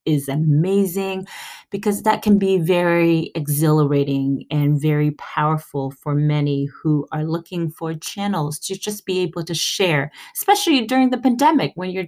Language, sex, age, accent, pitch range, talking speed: English, female, 30-49, American, 150-200 Hz, 150 wpm